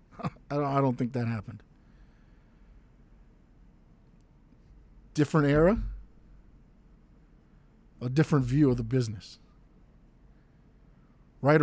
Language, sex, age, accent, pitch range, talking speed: English, male, 50-69, American, 130-180 Hz, 70 wpm